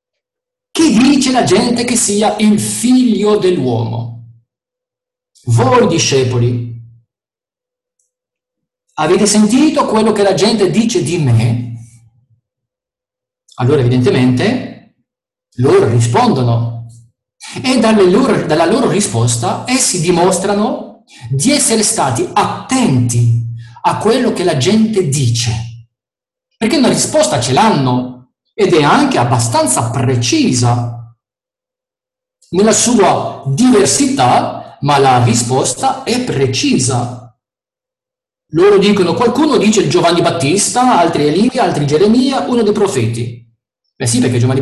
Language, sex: Italian, male